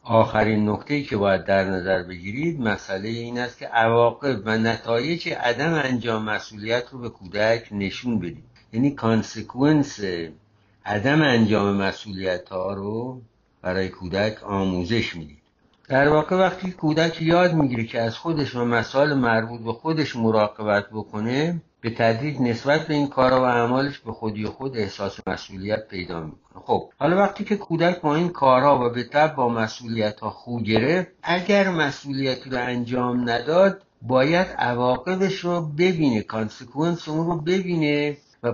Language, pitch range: Persian, 105-145 Hz